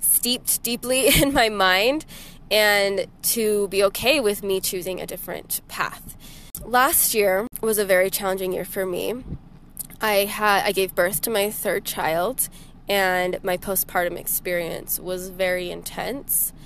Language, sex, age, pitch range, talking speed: English, female, 20-39, 190-230 Hz, 140 wpm